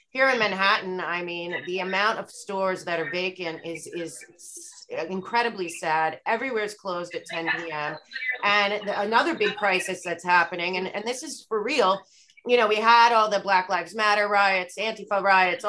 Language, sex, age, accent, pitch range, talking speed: English, female, 30-49, American, 185-220 Hz, 170 wpm